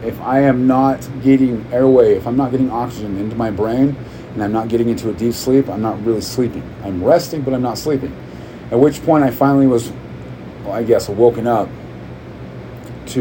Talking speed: 200 wpm